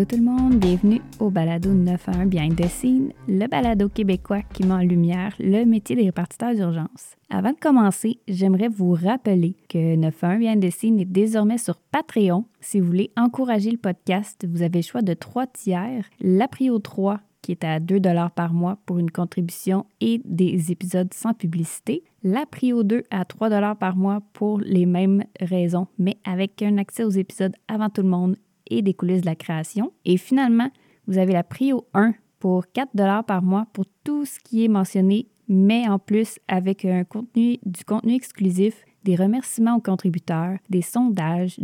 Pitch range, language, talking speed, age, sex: 185-225 Hz, French, 185 wpm, 20-39, female